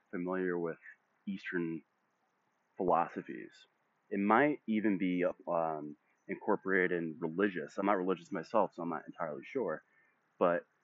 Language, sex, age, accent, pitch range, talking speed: English, male, 30-49, American, 85-110 Hz, 120 wpm